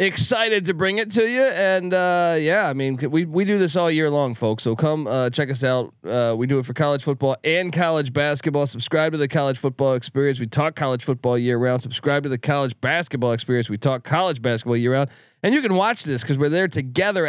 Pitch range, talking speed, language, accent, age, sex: 130-170 Hz, 235 wpm, English, American, 20-39, male